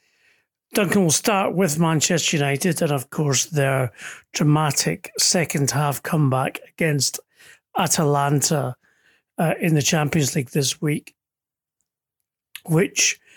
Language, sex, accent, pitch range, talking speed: English, male, British, 140-175 Hz, 110 wpm